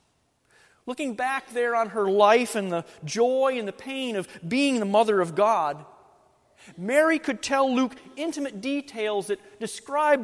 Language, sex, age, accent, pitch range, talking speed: English, male, 40-59, American, 195-255 Hz, 150 wpm